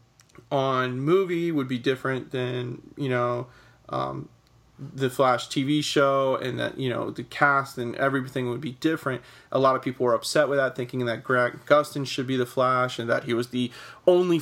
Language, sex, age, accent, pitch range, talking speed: English, male, 30-49, American, 125-140 Hz, 190 wpm